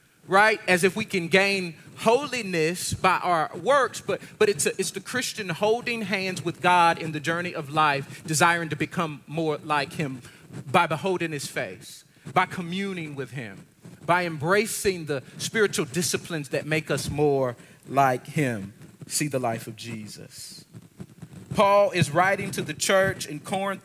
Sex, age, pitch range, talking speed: male, 40-59, 160-195 Hz, 160 wpm